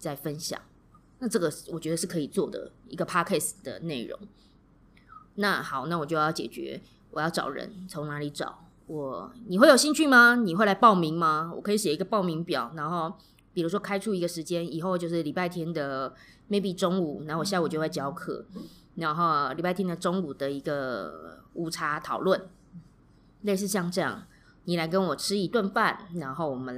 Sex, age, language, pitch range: female, 20-39, Chinese, 155-195 Hz